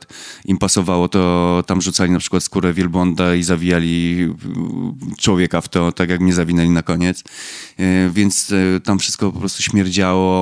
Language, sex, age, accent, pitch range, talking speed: Polish, male, 20-39, native, 90-100 Hz, 150 wpm